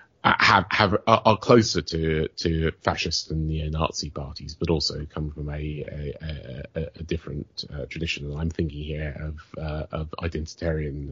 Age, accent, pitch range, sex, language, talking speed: 30-49, British, 75-85 Hz, male, English, 150 wpm